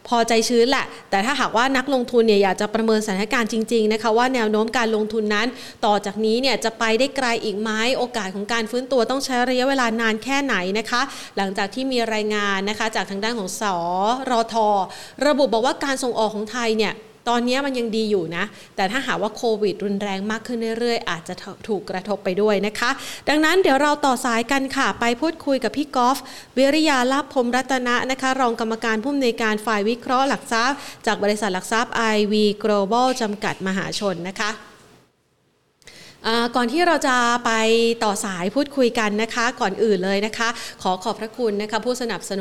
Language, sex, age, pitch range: Thai, female, 30-49, 205-245 Hz